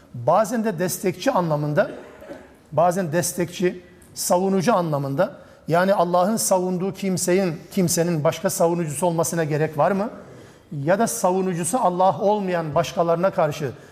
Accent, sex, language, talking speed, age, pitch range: native, male, Turkish, 110 wpm, 50-69, 160-205 Hz